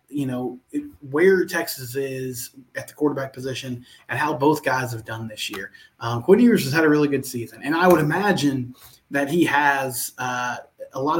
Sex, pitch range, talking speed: male, 125-145 Hz, 195 wpm